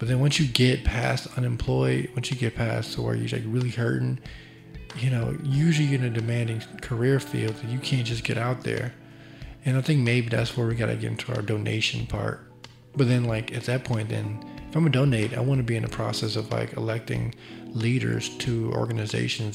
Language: English